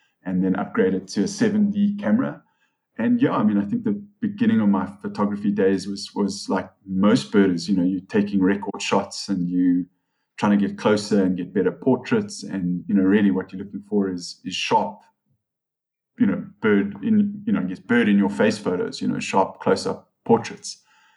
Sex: male